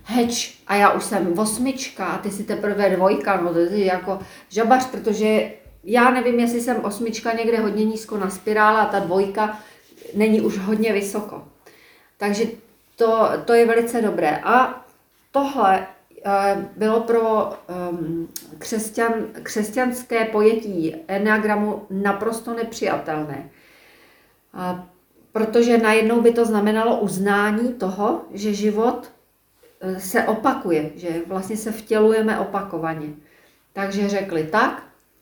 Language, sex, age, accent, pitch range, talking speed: Czech, female, 40-59, native, 175-220 Hz, 120 wpm